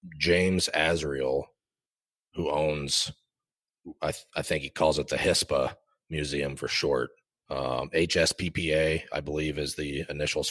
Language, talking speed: English, 130 wpm